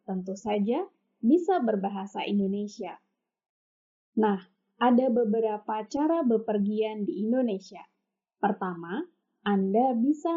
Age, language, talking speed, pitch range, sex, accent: 20-39, Indonesian, 85 wpm, 205-275 Hz, female, native